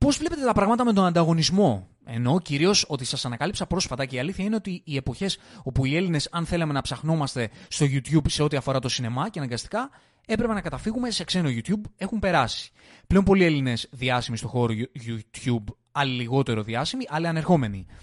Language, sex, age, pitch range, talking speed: Greek, male, 20-39, 130-195 Hz, 185 wpm